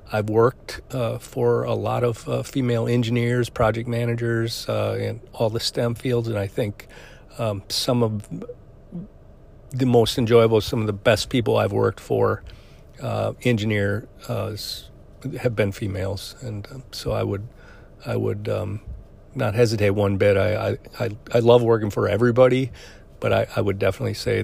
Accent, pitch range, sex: American, 100-125 Hz, male